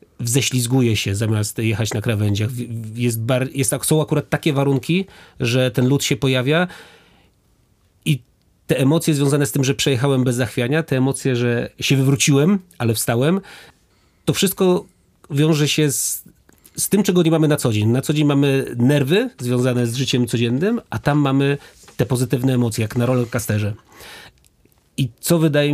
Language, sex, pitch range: Polish, male, 120-145 Hz